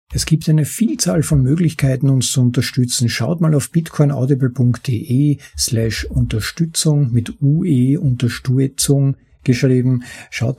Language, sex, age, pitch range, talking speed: German, male, 50-69, 115-150 Hz, 115 wpm